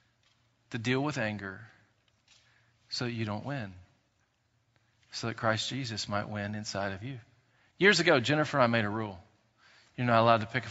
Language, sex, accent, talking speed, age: English, male, American, 180 wpm, 40-59